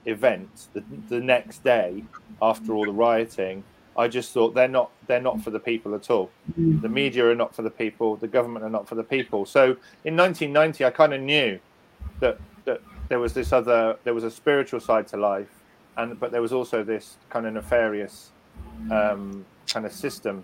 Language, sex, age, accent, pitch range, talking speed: English, male, 40-59, British, 110-135 Hz, 200 wpm